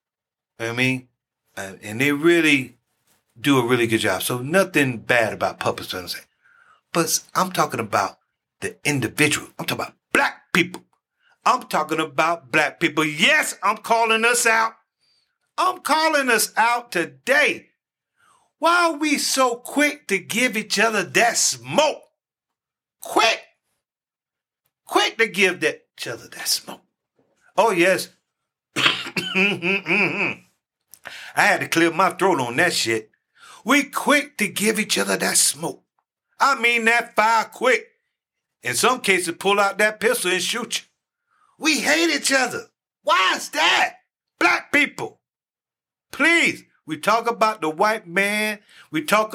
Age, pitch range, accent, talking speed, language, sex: 50-69, 160-235 Hz, American, 135 wpm, English, male